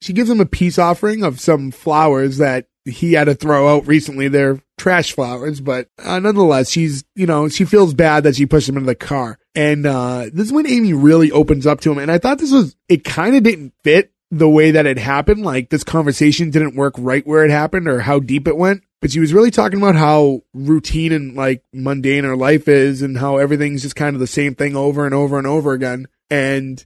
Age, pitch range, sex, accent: 20-39, 135-165 Hz, male, American